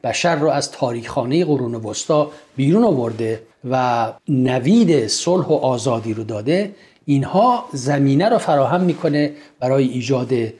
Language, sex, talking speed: Persian, male, 130 wpm